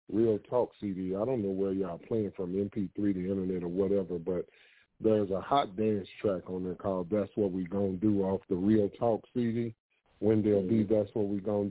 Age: 40-59